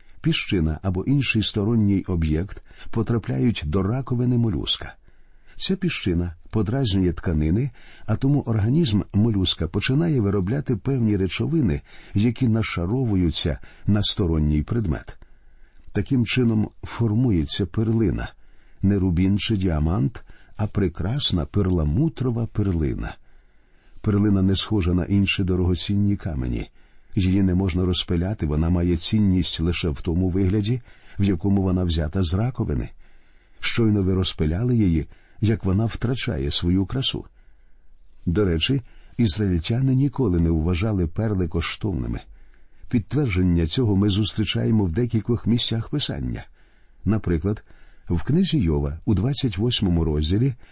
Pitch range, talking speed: 90-115 Hz, 110 wpm